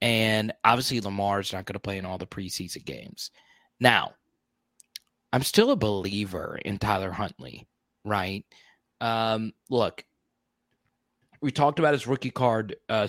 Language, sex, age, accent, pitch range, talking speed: English, male, 30-49, American, 100-125 Hz, 140 wpm